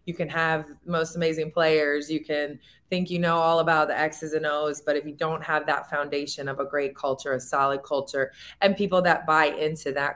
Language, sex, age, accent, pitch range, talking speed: English, female, 20-39, American, 145-170 Hz, 220 wpm